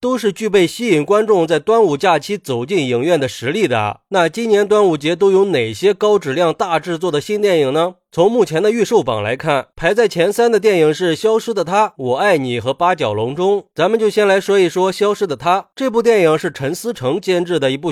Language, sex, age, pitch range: Chinese, male, 30-49, 145-215 Hz